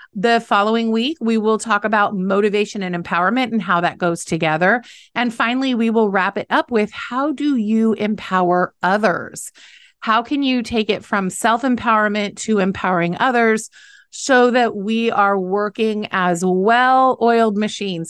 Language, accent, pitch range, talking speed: English, American, 180-230 Hz, 160 wpm